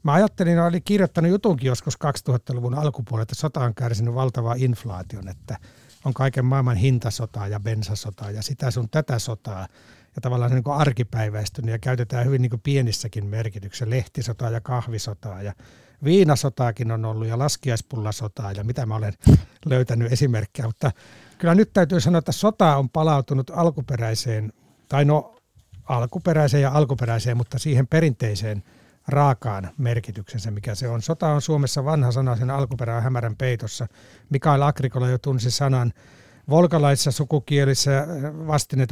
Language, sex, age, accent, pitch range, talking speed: Finnish, male, 60-79, native, 115-145 Hz, 145 wpm